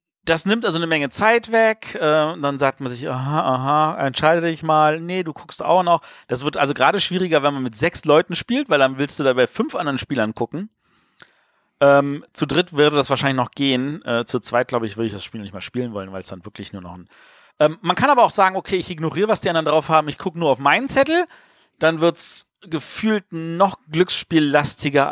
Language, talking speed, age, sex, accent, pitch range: German, 220 wpm, 40-59, male, German, 130-180 Hz